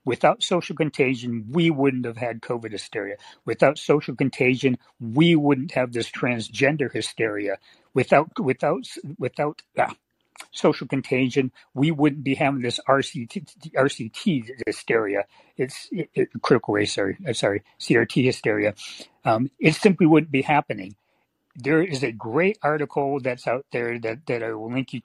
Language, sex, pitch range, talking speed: English, male, 120-150 Hz, 145 wpm